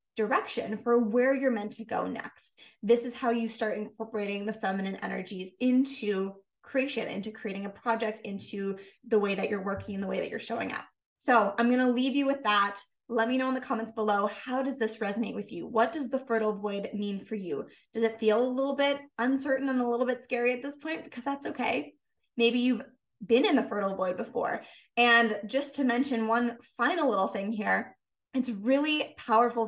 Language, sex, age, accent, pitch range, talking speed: English, female, 20-39, American, 220-255 Hz, 205 wpm